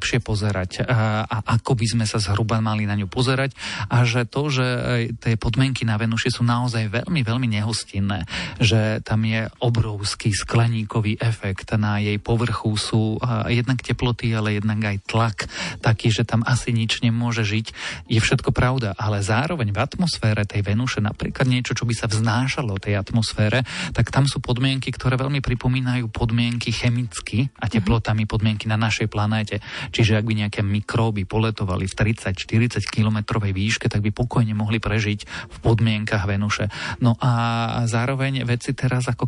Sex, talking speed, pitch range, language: male, 160 wpm, 105-125 Hz, Slovak